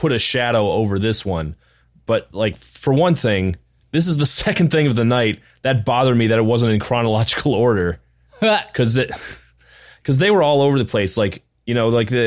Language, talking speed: English, 200 wpm